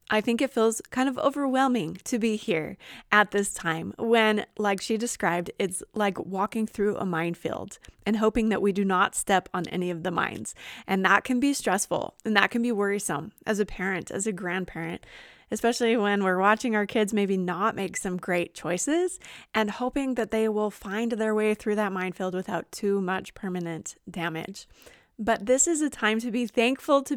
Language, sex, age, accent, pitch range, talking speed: English, female, 20-39, American, 200-260 Hz, 195 wpm